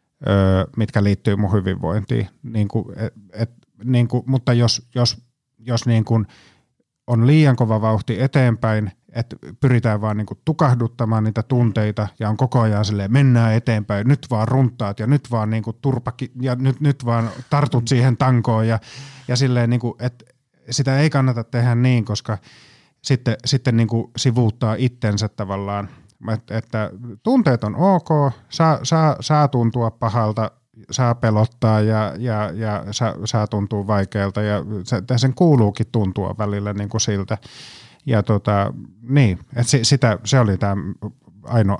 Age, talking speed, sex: 30-49, 140 wpm, male